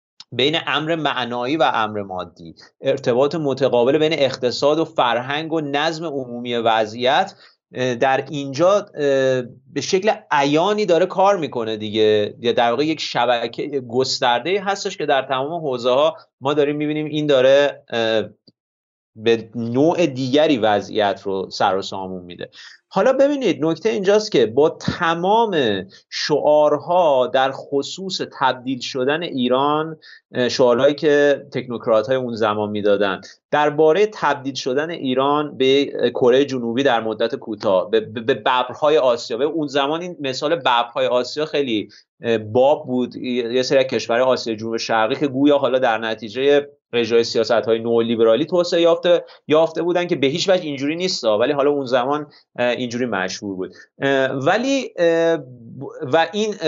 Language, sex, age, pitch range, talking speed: Persian, male, 30-49, 120-155 Hz, 135 wpm